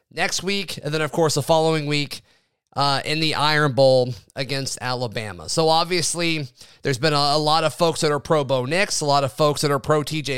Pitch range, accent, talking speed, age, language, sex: 135-165 Hz, American, 210 wpm, 30-49, English, male